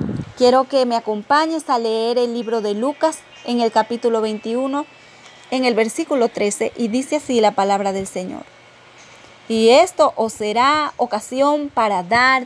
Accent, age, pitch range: American, 30-49, 225-290 Hz